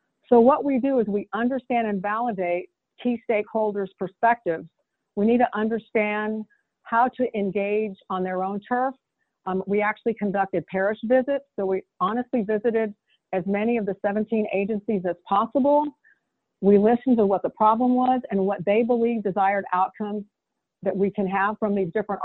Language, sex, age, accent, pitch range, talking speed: English, female, 50-69, American, 195-230 Hz, 165 wpm